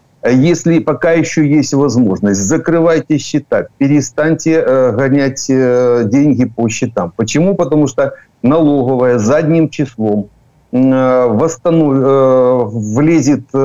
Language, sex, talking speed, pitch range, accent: Ukrainian, male, 85 wpm, 125-155 Hz, native